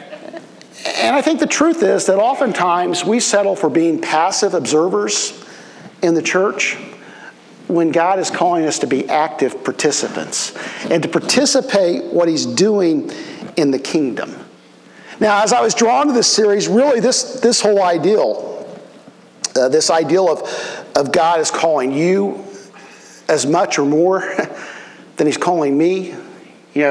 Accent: American